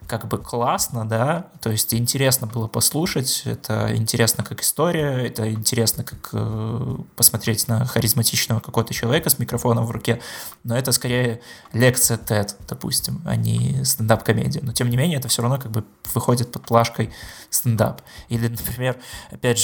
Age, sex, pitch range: 20-39, male, 110-120 Hz